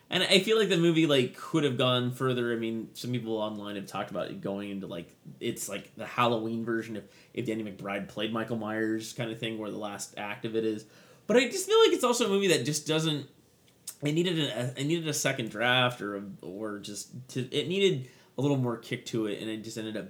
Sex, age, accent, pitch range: male, 20-39, American, 110-145 Hz